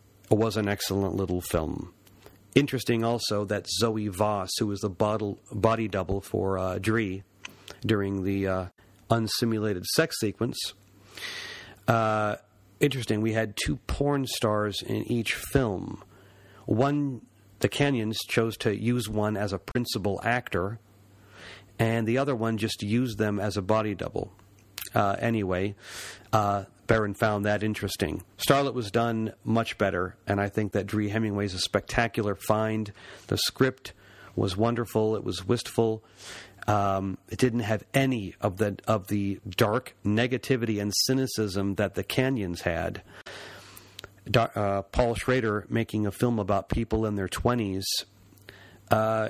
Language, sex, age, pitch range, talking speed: English, male, 50-69, 100-115 Hz, 140 wpm